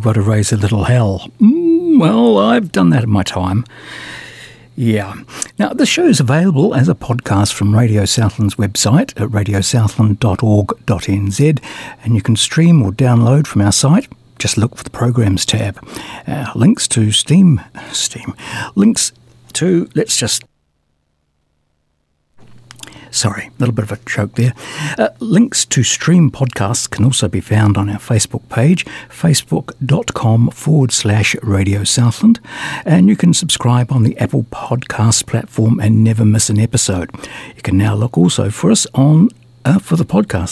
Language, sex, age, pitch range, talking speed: English, male, 60-79, 105-150 Hz, 155 wpm